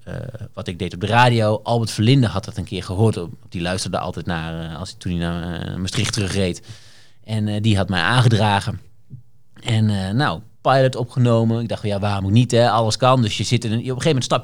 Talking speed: 225 wpm